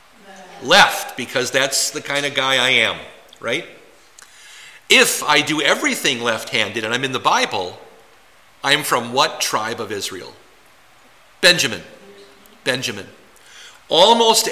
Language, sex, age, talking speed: English, male, 50-69, 120 wpm